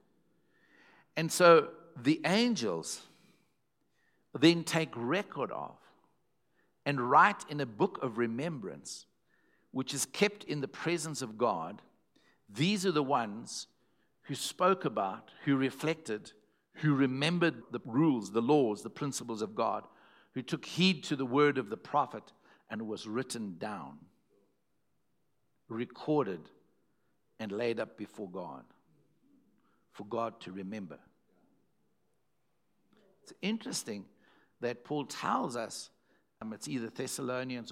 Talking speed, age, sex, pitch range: 120 wpm, 60-79, male, 115-160 Hz